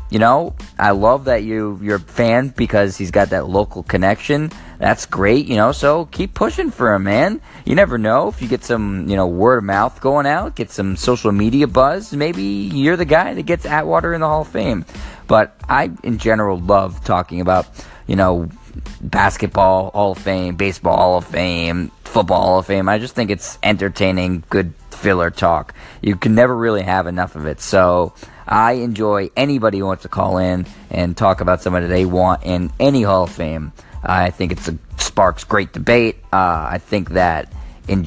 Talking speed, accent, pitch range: 195 wpm, American, 90-110 Hz